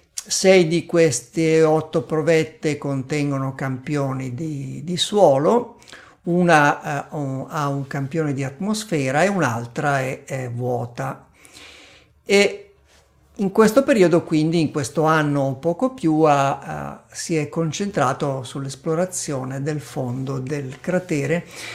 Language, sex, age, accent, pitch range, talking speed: Italian, male, 50-69, native, 140-180 Hz, 115 wpm